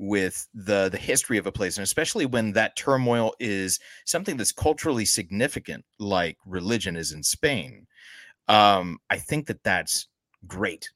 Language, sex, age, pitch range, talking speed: English, male, 30-49, 95-120 Hz, 155 wpm